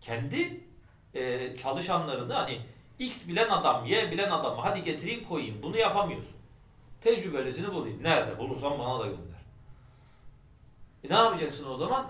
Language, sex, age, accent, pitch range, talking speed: Turkish, male, 40-59, native, 100-145 Hz, 135 wpm